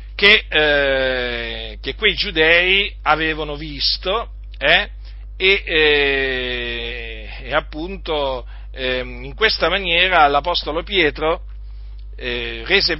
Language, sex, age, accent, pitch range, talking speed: Italian, male, 40-59, native, 115-170 Hz, 90 wpm